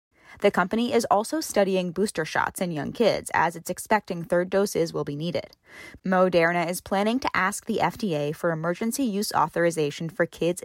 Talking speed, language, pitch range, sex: 175 wpm, English, 170-225 Hz, female